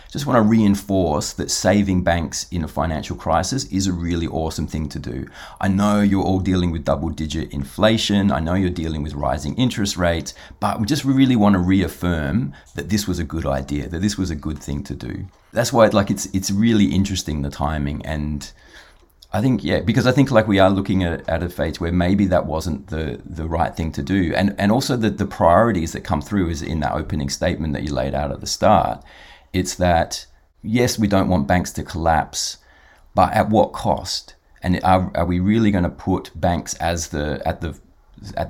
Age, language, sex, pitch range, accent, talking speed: 30-49, English, male, 75-95 Hz, Australian, 215 wpm